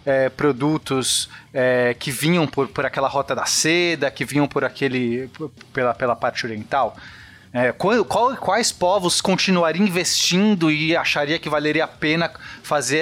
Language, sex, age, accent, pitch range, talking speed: Portuguese, male, 30-49, Brazilian, 135-185 Hz, 150 wpm